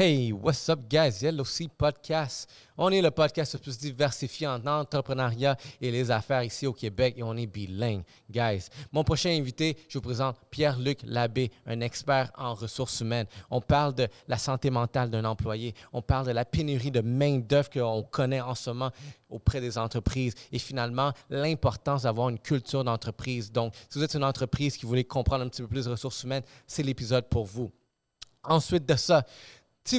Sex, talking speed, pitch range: male, 195 wpm, 120-140 Hz